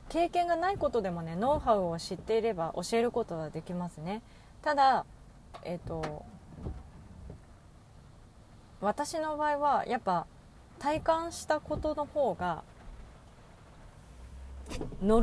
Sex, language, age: female, Japanese, 30-49